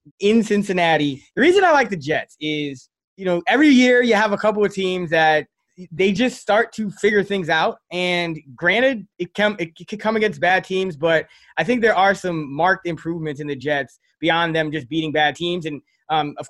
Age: 20-39